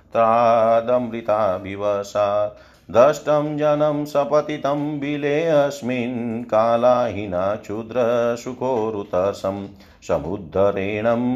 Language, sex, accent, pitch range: Hindi, male, native, 105-130 Hz